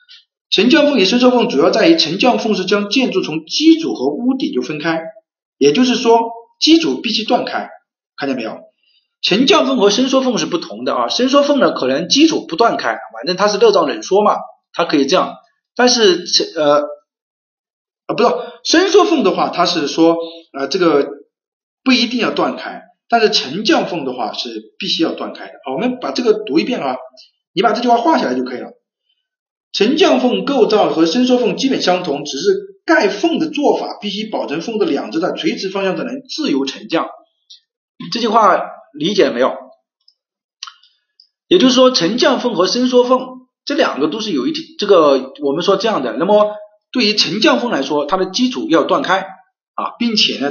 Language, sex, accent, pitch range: Chinese, male, native, 205-325 Hz